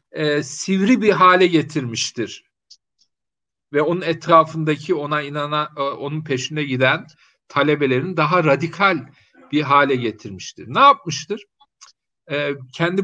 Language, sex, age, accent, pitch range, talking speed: Turkish, male, 50-69, native, 125-165 Hz, 110 wpm